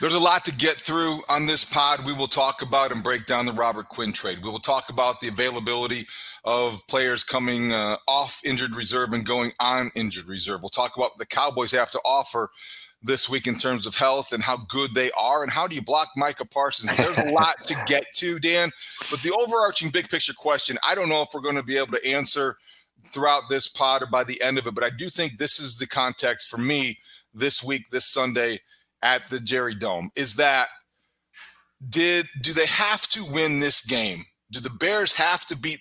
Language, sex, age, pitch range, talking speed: English, male, 40-59, 125-155 Hz, 220 wpm